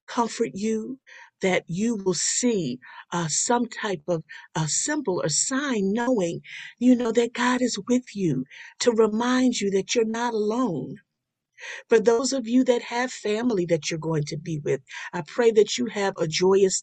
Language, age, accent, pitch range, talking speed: English, 50-69, American, 180-255 Hz, 175 wpm